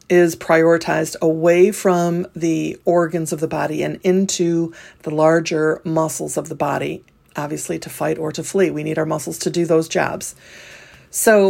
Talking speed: 165 wpm